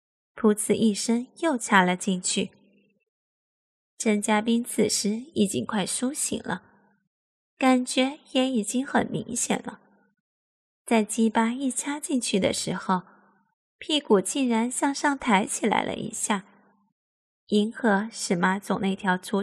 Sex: female